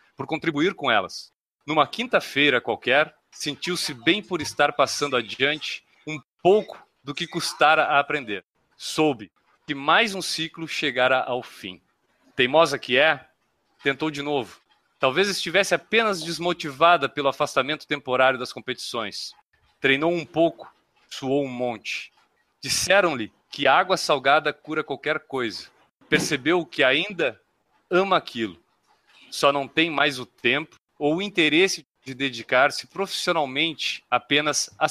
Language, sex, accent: Portuguese, male, Brazilian